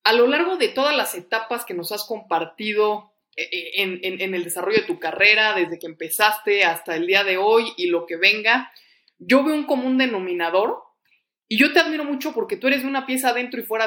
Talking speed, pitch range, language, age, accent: 215 wpm, 195-275 Hz, Spanish, 20-39, Mexican